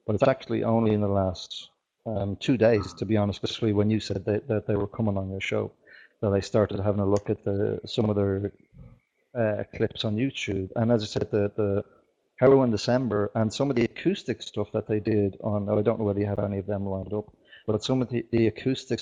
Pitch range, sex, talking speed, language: 100-115 Hz, male, 245 wpm, English